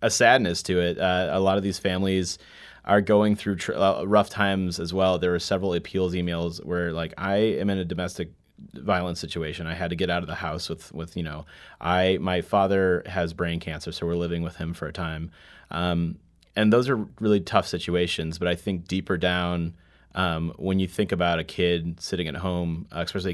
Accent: American